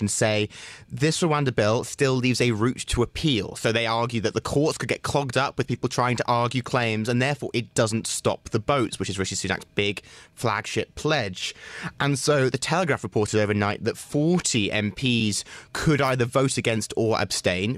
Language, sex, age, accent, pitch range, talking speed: English, male, 30-49, British, 110-140 Hz, 185 wpm